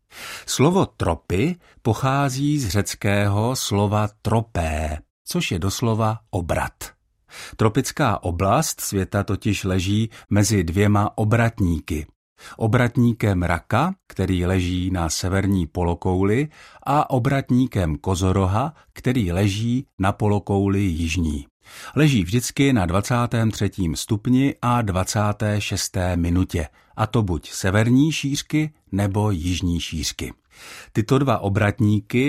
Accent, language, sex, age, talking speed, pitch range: native, Czech, male, 50-69, 100 wpm, 95-120 Hz